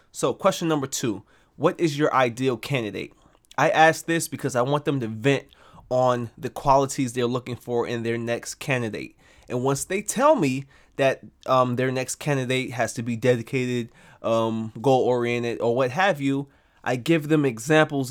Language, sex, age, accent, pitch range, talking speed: English, male, 20-39, American, 120-150 Hz, 170 wpm